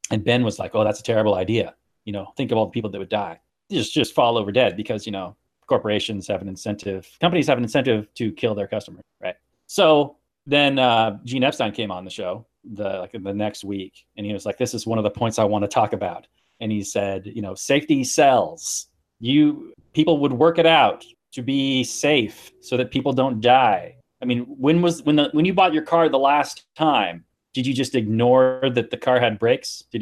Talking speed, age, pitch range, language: 230 wpm, 30-49, 110-155 Hz, English